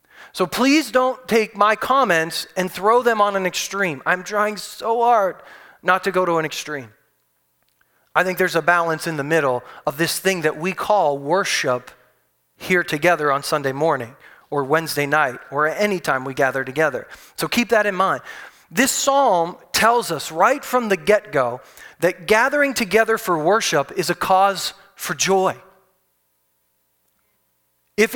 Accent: American